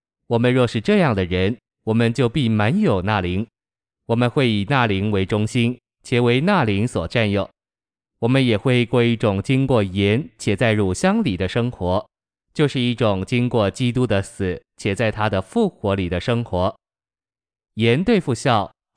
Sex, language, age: male, Chinese, 20-39